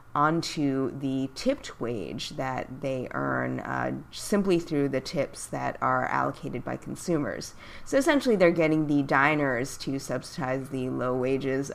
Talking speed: 145 wpm